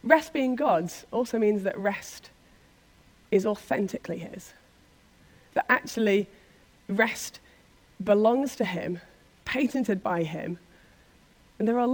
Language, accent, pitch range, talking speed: English, British, 195-260 Hz, 110 wpm